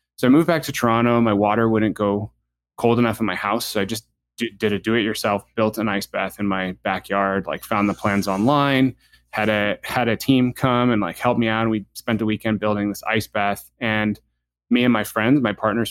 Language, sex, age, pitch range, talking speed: English, male, 20-39, 100-110 Hz, 225 wpm